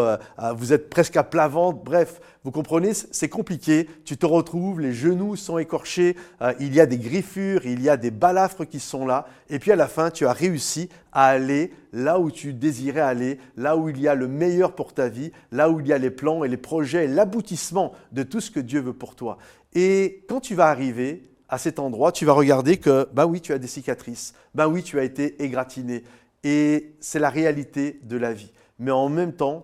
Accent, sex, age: French, male, 50-69